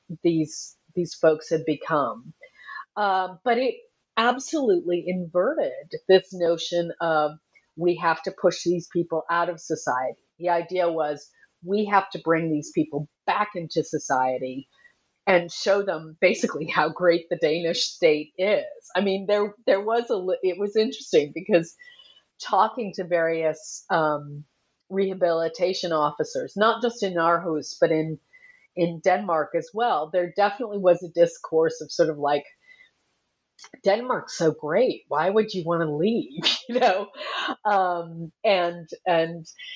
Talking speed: 140 wpm